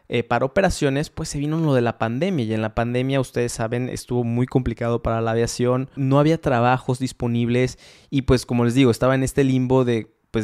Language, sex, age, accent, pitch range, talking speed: Spanish, male, 20-39, Mexican, 120-150 Hz, 205 wpm